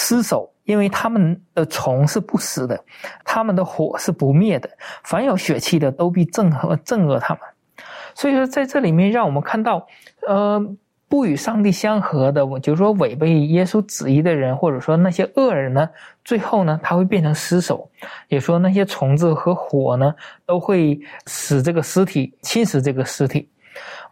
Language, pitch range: Chinese, 150-225 Hz